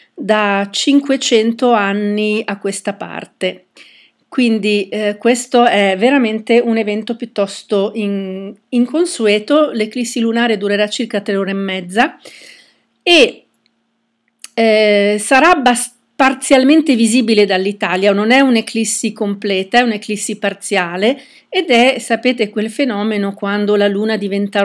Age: 40-59